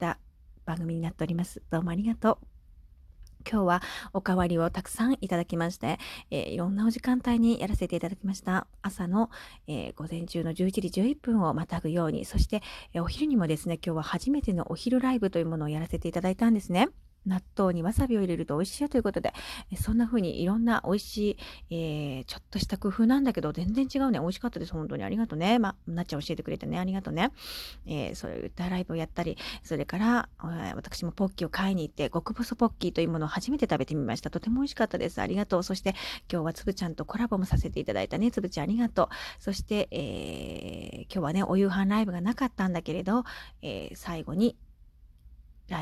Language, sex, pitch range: Japanese, female, 170-225 Hz